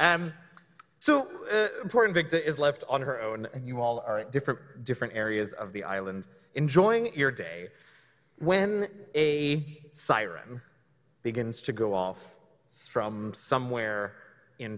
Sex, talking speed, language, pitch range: male, 140 wpm, English, 115-160 Hz